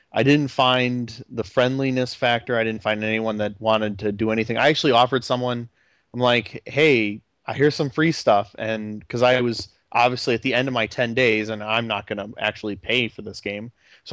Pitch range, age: 110-140 Hz, 20-39